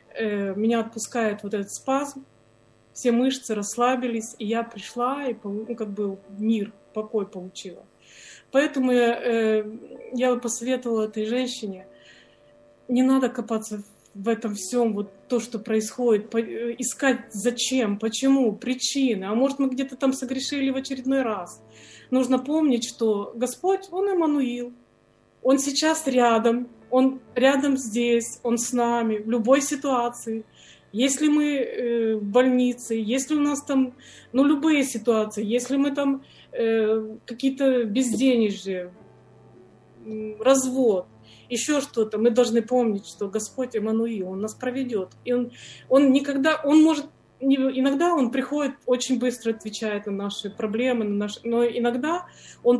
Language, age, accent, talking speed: Ukrainian, 20-39, native, 130 wpm